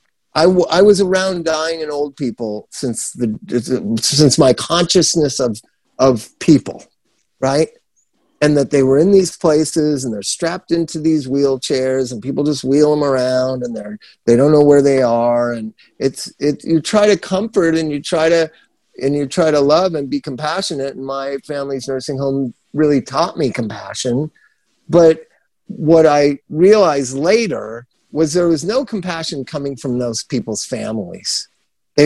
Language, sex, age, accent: English, male, 50-69, American